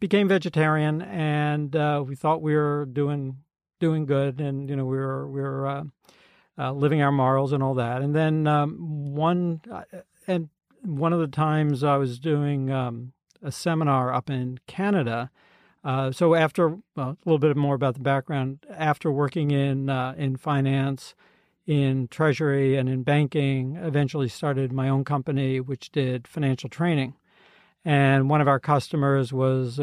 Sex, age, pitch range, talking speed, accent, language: male, 50-69, 135-155 Hz, 165 wpm, American, English